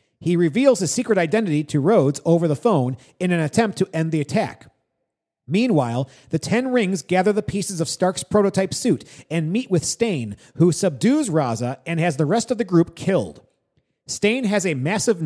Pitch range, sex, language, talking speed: 155-225 Hz, male, English, 185 wpm